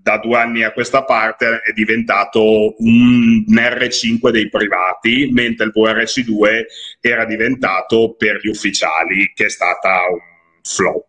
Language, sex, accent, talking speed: Italian, male, native, 135 wpm